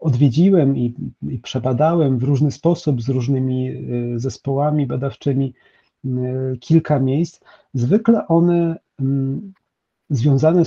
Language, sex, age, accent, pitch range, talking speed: Polish, male, 40-59, native, 125-165 Hz, 90 wpm